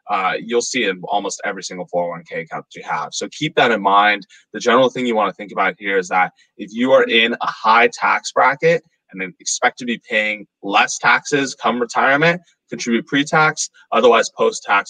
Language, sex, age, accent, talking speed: English, male, 20-39, American, 220 wpm